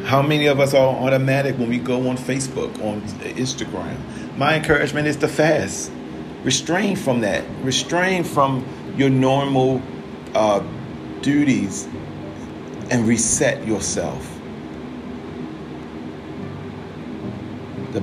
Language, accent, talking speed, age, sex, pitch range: English, American, 105 wpm, 40-59, male, 100-135 Hz